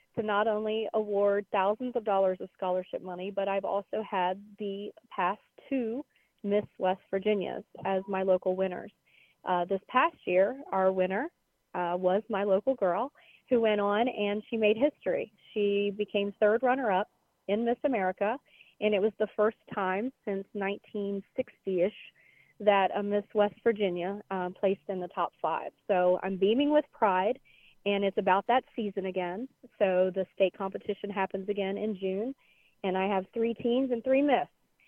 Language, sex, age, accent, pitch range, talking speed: English, female, 40-59, American, 190-220 Hz, 165 wpm